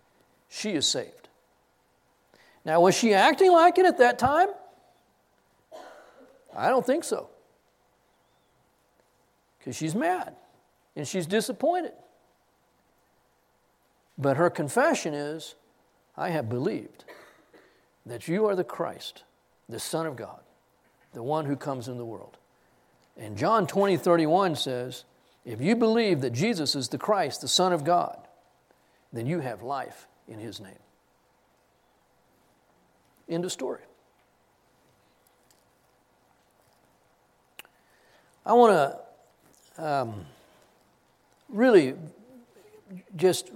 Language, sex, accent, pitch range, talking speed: English, male, American, 140-220 Hz, 105 wpm